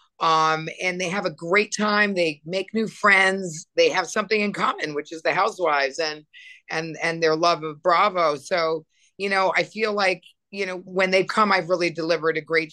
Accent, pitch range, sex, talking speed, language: American, 160-200 Hz, female, 205 wpm, English